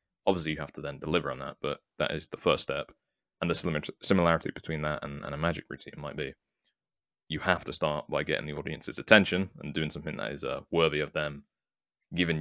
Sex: male